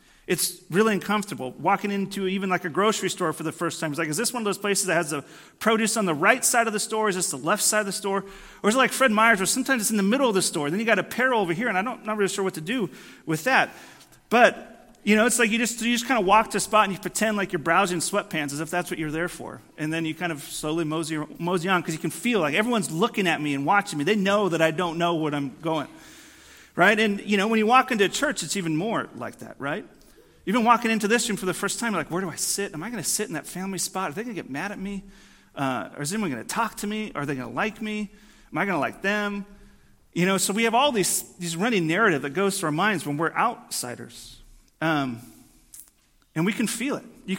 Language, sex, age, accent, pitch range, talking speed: English, male, 40-59, American, 160-215 Hz, 280 wpm